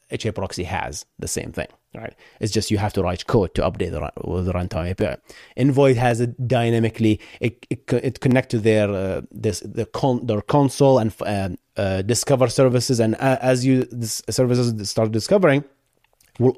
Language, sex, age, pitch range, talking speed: English, male, 30-49, 105-135 Hz, 175 wpm